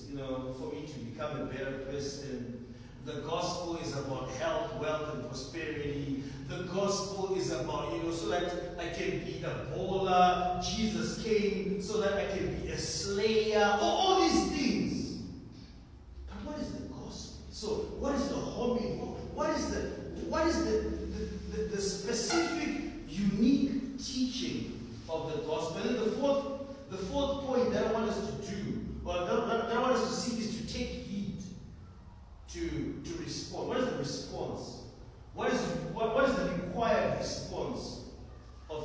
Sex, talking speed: male, 165 wpm